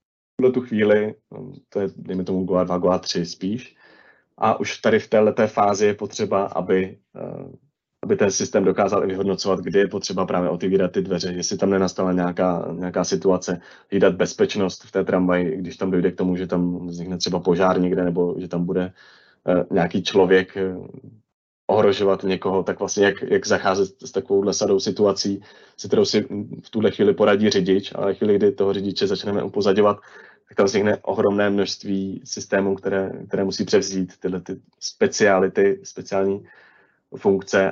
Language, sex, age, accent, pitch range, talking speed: Czech, male, 30-49, native, 95-105 Hz, 160 wpm